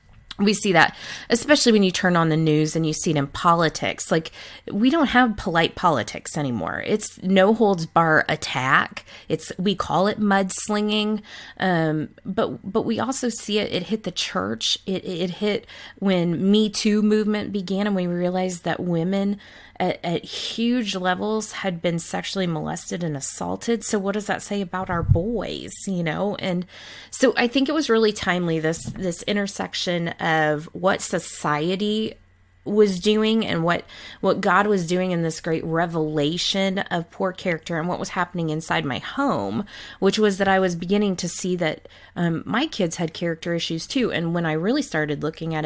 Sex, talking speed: female, 180 wpm